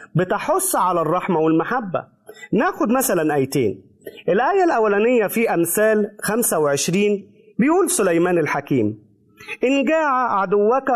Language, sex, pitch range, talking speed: Arabic, male, 185-270 Hz, 100 wpm